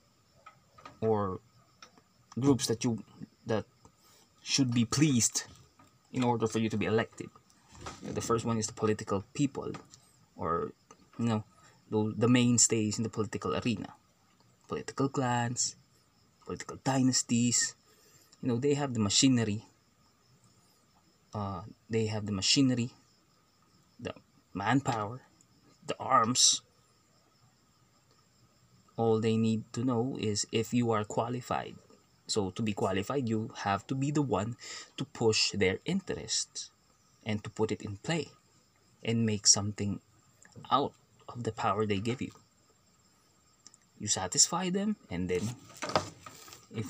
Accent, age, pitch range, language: native, 20-39, 105-125 Hz, Filipino